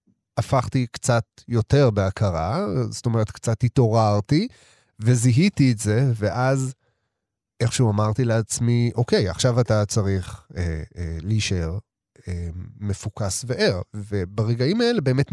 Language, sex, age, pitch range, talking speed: Hebrew, male, 30-49, 105-130 Hz, 110 wpm